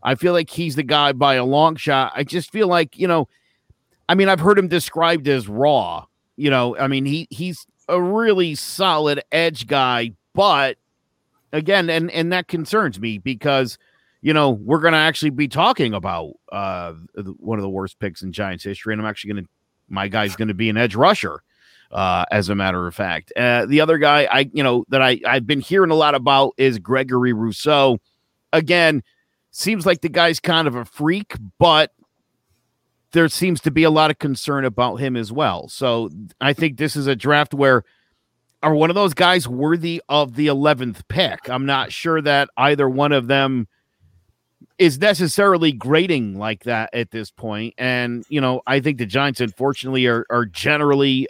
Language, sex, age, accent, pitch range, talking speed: English, male, 50-69, American, 120-160 Hz, 190 wpm